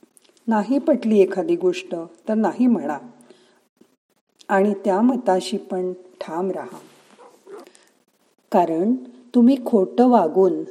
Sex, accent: female, native